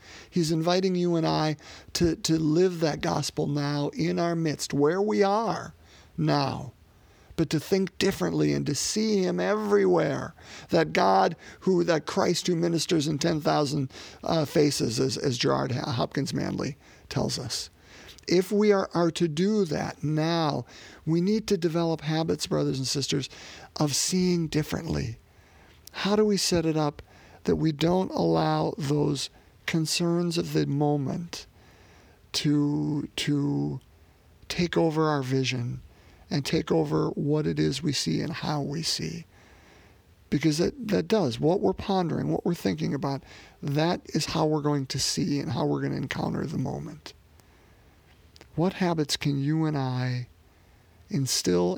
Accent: American